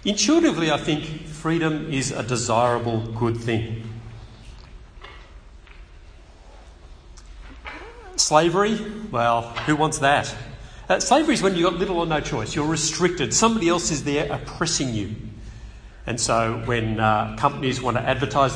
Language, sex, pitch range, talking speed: English, male, 115-160 Hz, 130 wpm